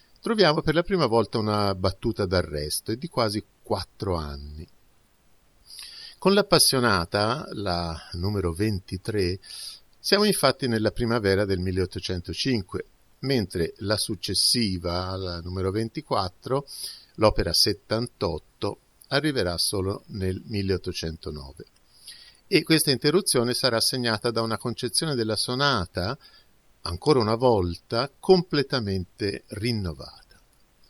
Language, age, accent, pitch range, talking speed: Italian, 50-69, native, 90-120 Hz, 100 wpm